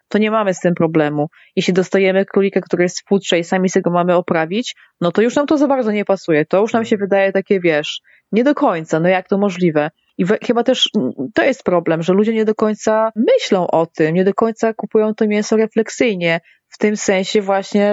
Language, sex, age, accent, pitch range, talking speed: Polish, female, 20-39, native, 180-225 Hz, 220 wpm